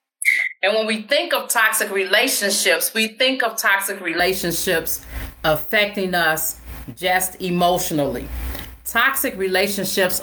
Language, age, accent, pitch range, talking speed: English, 40-59, American, 170-215 Hz, 105 wpm